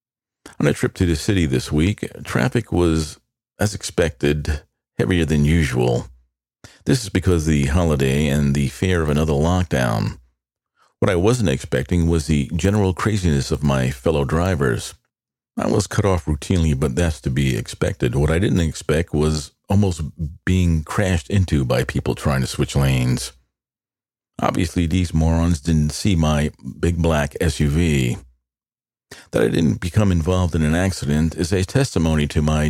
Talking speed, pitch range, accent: 160 wpm, 75-95 Hz, American